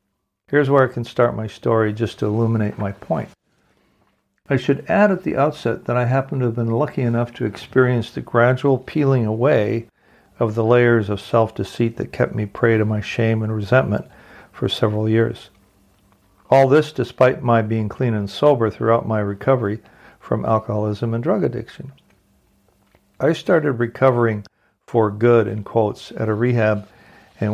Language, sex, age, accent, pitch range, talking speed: English, male, 60-79, American, 105-125 Hz, 165 wpm